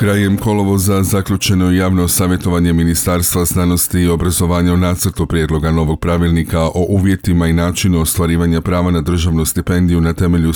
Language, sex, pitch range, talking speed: Croatian, male, 85-95 Hz, 135 wpm